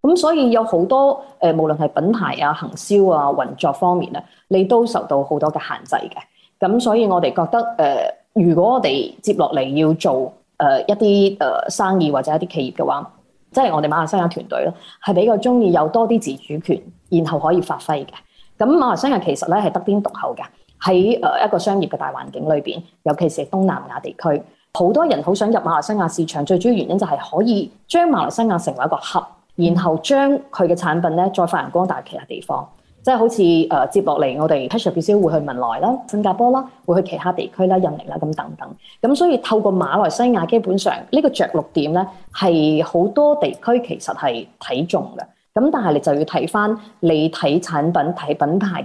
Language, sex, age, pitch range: Chinese, female, 20-39, 170-235 Hz